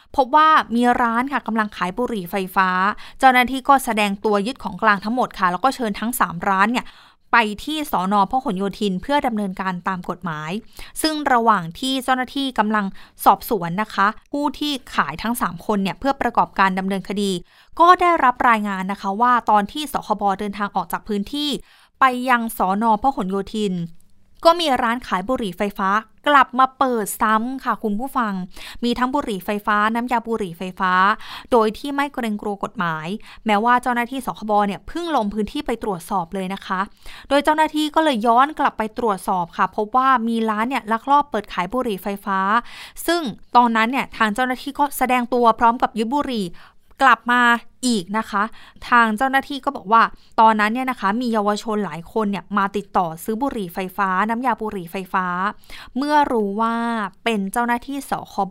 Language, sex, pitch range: Thai, female, 200-255 Hz